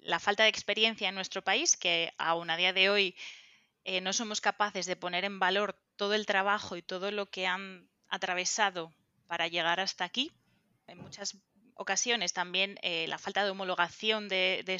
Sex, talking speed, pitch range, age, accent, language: female, 185 wpm, 175-205 Hz, 20-39, Spanish, Spanish